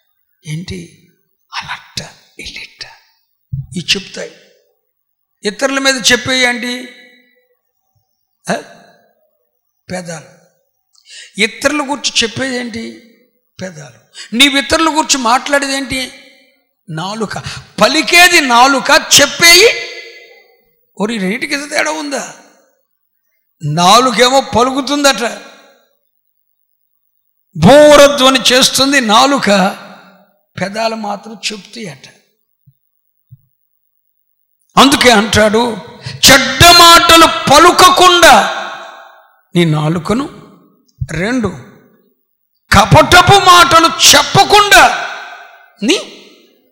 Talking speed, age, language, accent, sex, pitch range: 60 wpm, 60-79, Telugu, native, male, 195-320 Hz